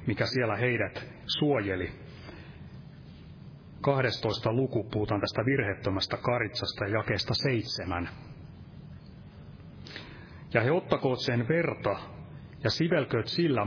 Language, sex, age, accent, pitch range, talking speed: Finnish, male, 30-49, native, 105-140 Hz, 90 wpm